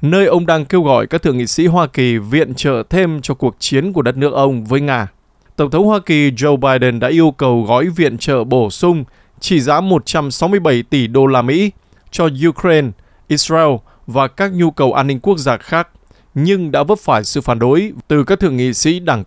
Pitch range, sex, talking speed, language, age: 125-170 Hz, male, 215 wpm, Vietnamese, 20-39